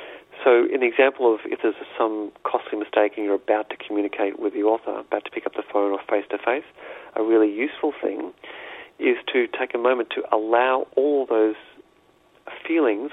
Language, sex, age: English, male, 40-59